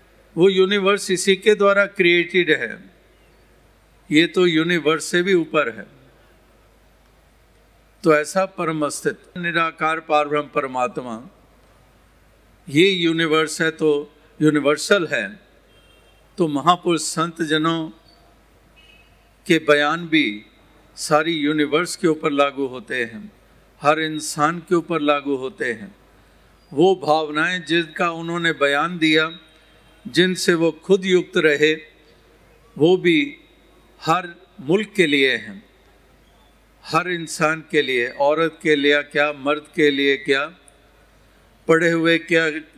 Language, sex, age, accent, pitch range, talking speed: Hindi, male, 50-69, native, 150-170 Hz, 115 wpm